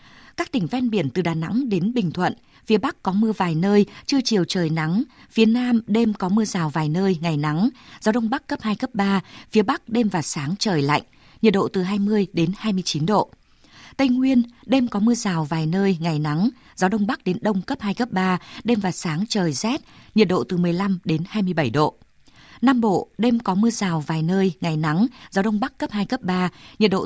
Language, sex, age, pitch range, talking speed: Vietnamese, female, 20-39, 180-225 Hz, 225 wpm